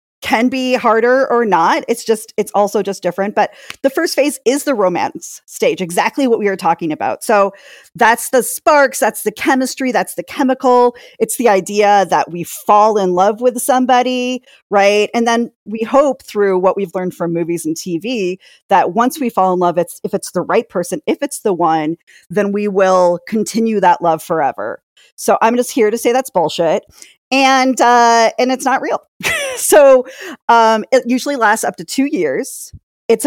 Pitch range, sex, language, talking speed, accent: 195-255 Hz, female, English, 190 wpm, American